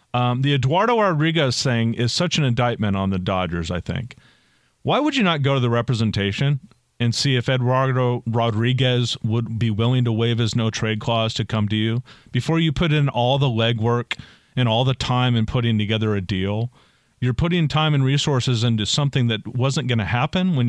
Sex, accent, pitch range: male, American, 120-150 Hz